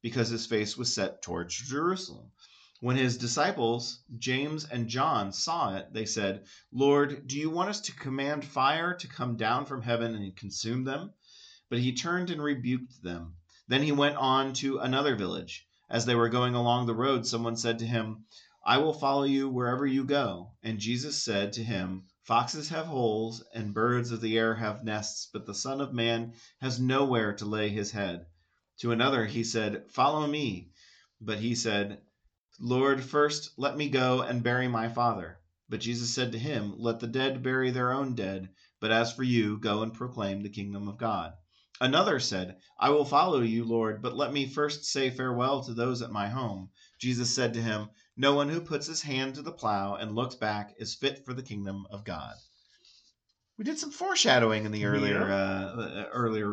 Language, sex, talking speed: English, male, 190 wpm